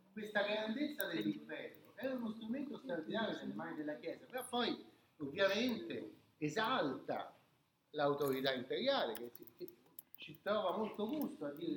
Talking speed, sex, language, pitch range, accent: 125 wpm, male, Italian, 145-220 Hz, native